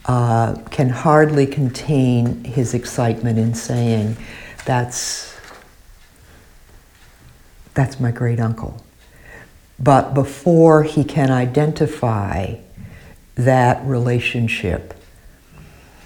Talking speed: 75 wpm